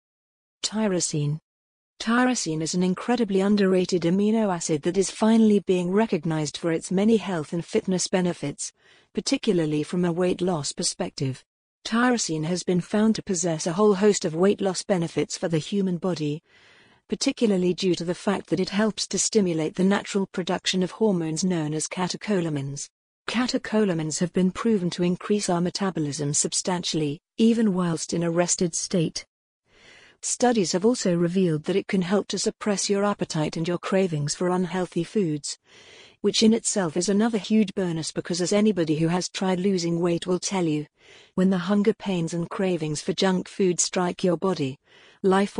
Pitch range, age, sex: 170-205 Hz, 50-69, female